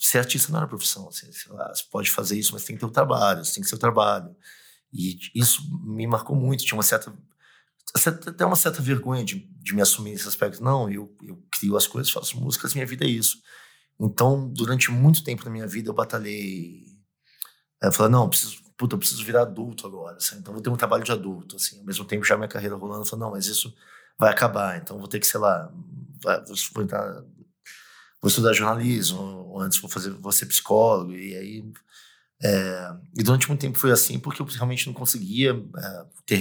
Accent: Brazilian